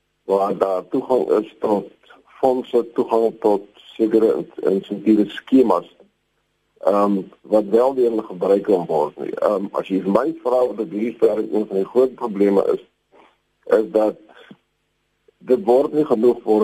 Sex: male